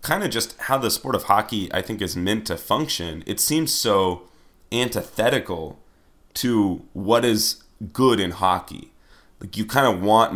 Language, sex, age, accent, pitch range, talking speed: English, male, 30-49, American, 90-110 Hz, 170 wpm